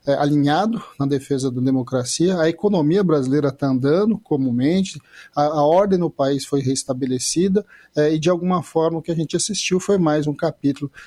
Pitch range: 130-155 Hz